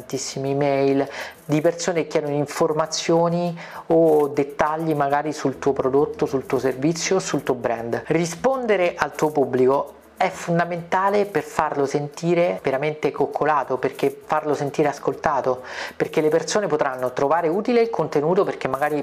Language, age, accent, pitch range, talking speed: Italian, 40-59, native, 135-170 Hz, 135 wpm